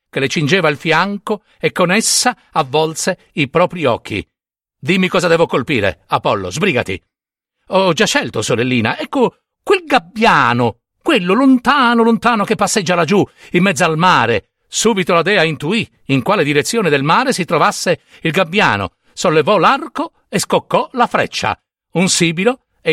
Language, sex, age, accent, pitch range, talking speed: Italian, male, 50-69, native, 160-240 Hz, 150 wpm